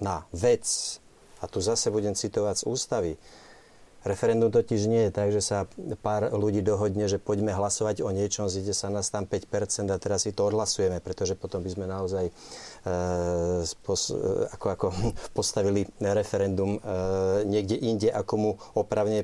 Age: 30-49